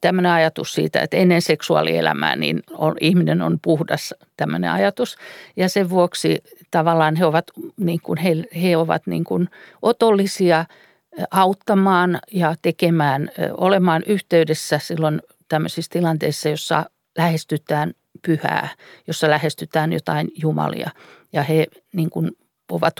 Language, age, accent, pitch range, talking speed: Finnish, 50-69, native, 165-215 Hz, 120 wpm